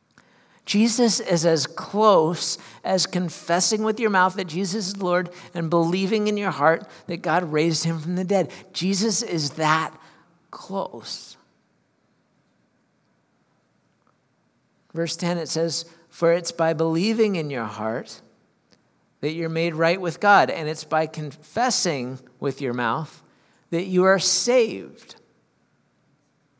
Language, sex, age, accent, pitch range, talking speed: English, male, 50-69, American, 160-195 Hz, 130 wpm